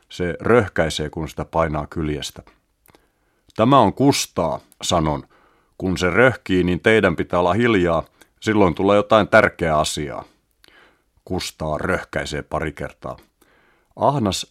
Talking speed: 115 wpm